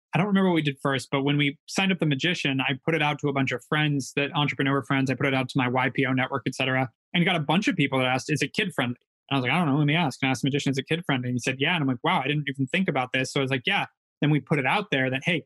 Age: 20-39